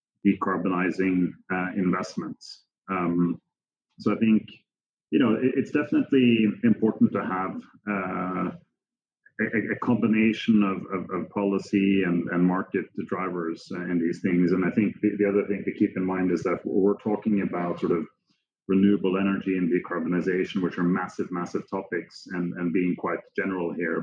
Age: 30-49